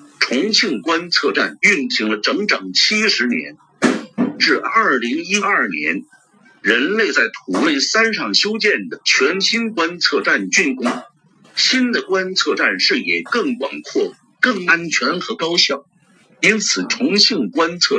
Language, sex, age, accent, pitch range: Chinese, male, 50-69, native, 165-255 Hz